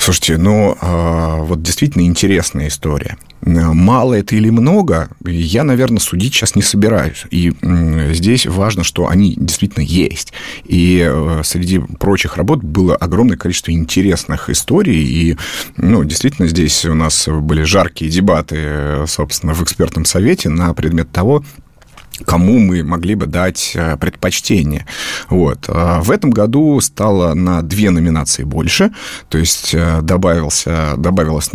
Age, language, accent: 30-49, Russian, native